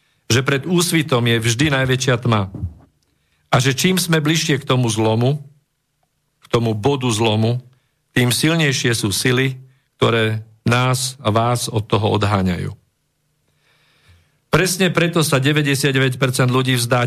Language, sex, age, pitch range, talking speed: Slovak, male, 50-69, 115-150 Hz, 125 wpm